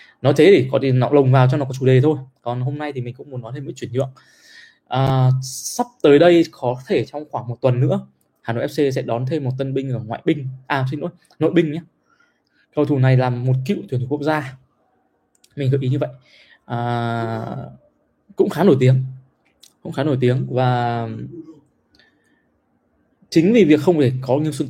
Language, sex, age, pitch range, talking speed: Vietnamese, male, 20-39, 125-150 Hz, 215 wpm